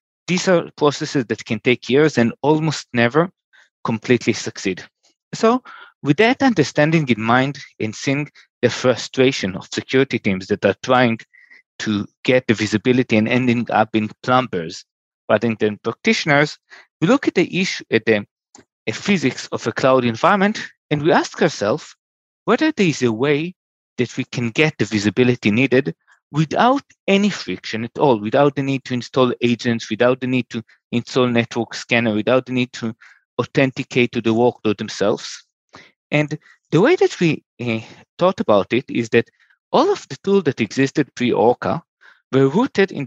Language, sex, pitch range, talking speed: English, male, 115-160 Hz, 165 wpm